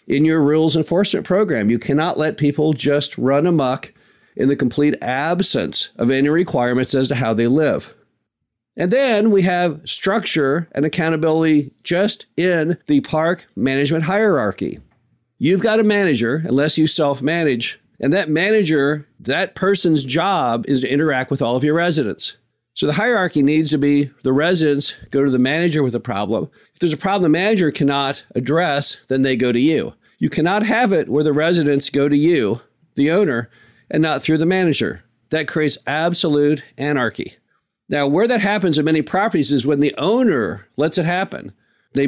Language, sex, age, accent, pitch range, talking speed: English, male, 50-69, American, 140-175 Hz, 175 wpm